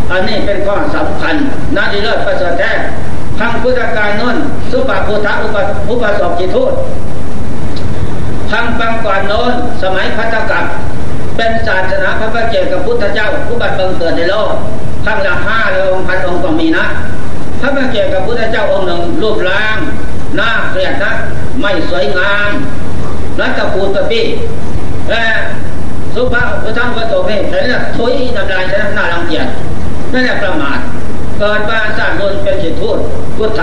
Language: Thai